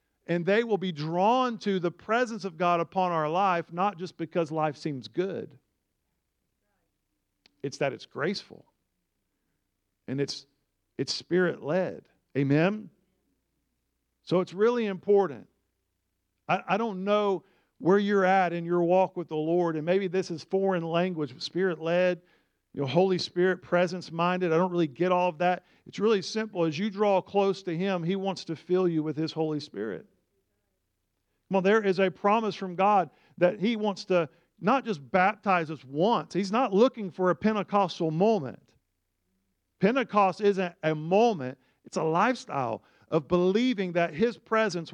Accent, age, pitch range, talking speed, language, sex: American, 50-69, 155-195 Hz, 155 wpm, English, male